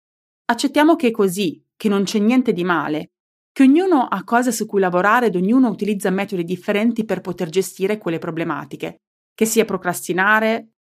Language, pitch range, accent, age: Italian, 180-235 Hz, native, 30-49